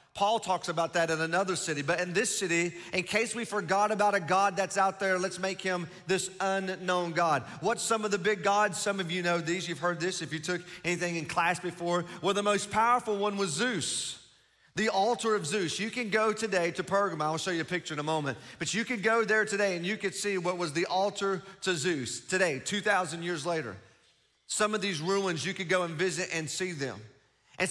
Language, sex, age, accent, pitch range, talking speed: English, male, 40-59, American, 170-210 Hz, 230 wpm